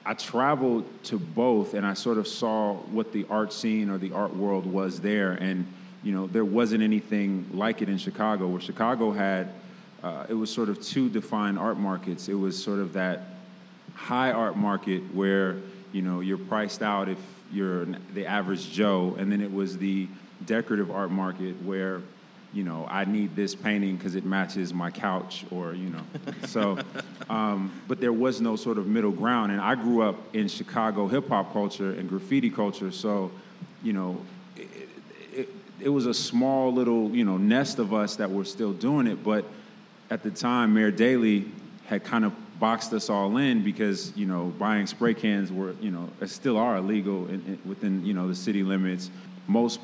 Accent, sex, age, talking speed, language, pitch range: American, male, 30-49, 190 wpm, English, 95-115 Hz